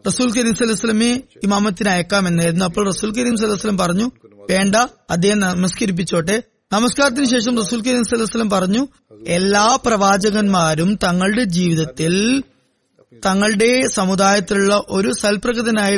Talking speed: 100 wpm